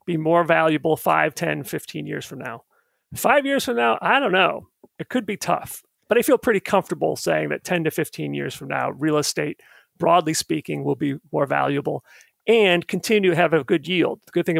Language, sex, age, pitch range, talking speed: English, male, 40-59, 150-185 Hz, 210 wpm